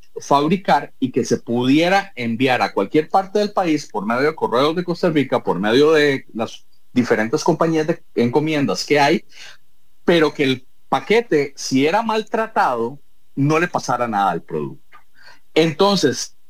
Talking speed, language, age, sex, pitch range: 155 wpm, English, 40-59, male, 120-180 Hz